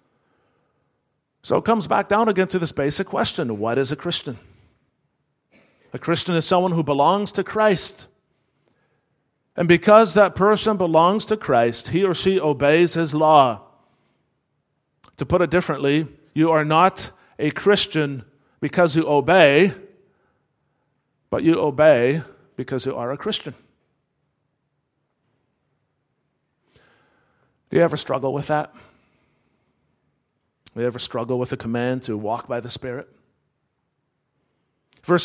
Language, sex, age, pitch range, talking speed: English, male, 40-59, 140-205 Hz, 125 wpm